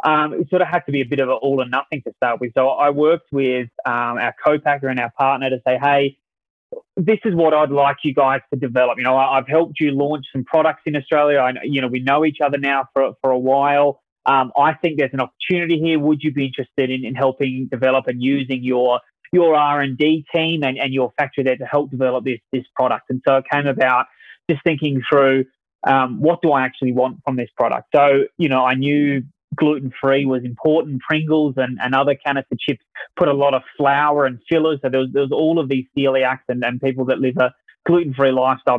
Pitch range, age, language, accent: 130-150 Hz, 20-39, English, Australian